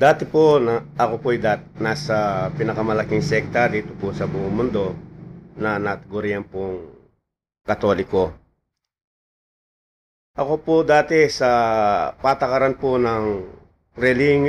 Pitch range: 110-140 Hz